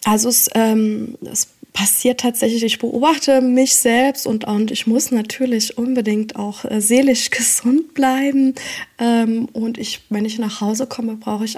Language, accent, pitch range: German, German, 205-240 Hz